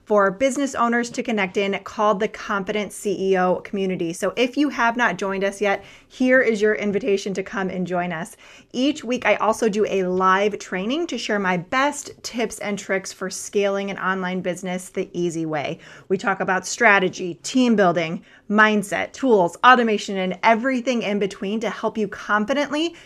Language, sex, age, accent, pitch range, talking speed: English, female, 30-49, American, 190-240 Hz, 175 wpm